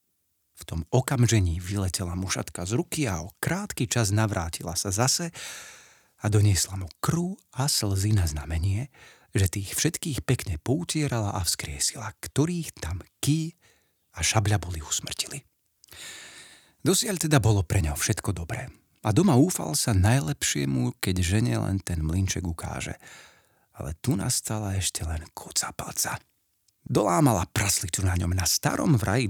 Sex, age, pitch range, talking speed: male, 40-59, 90-130 Hz, 135 wpm